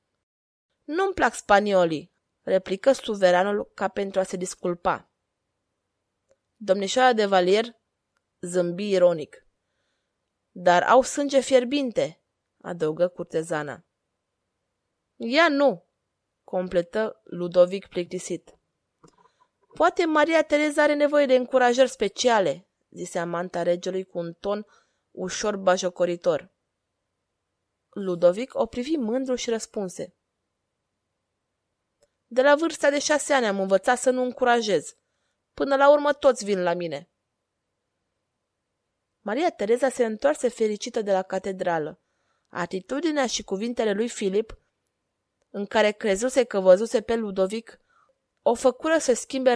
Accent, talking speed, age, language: native, 110 wpm, 20-39, Romanian